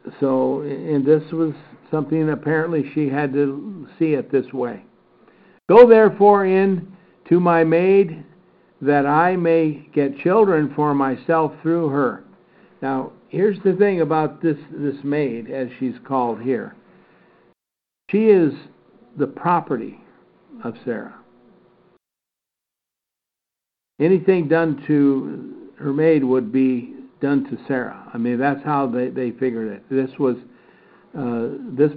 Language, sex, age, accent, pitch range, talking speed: English, male, 60-79, American, 130-160 Hz, 130 wpm